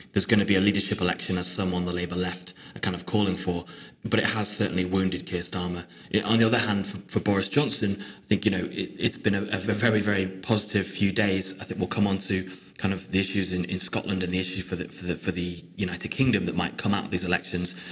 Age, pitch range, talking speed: 30-49, 95-105 Hz, 260 wpm